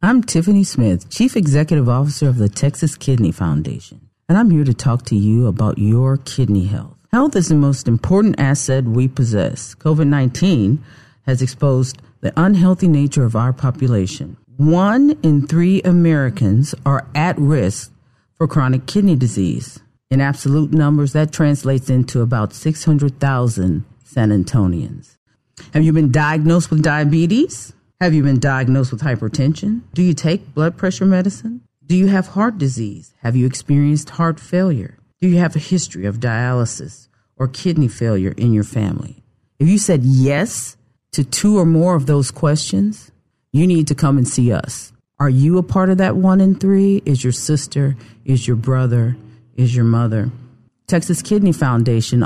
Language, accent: English, American